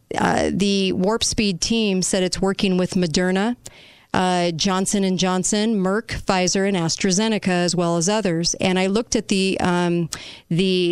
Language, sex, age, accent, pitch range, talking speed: English, female, 40-59, American, 175-200 Hz, 155 wpm